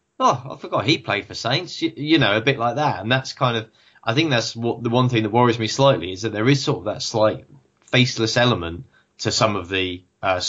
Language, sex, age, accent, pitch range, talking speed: English, male, 20-39, British, 100-120 Hz, 250 wpm